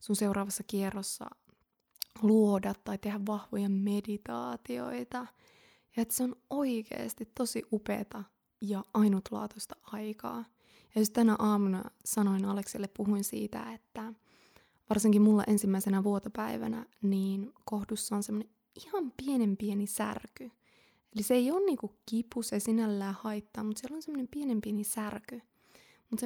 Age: 20-39